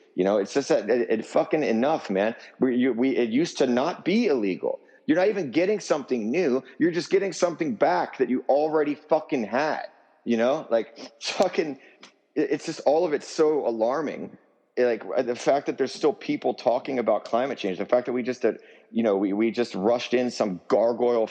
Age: 30-49